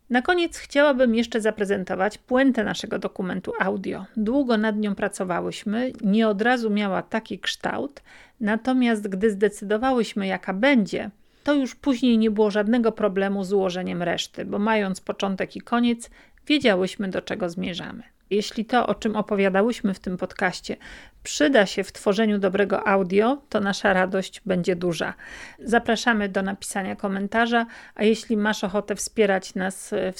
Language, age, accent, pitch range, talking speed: Polish, 40-59, native, 195-230 Hz, 145 wpm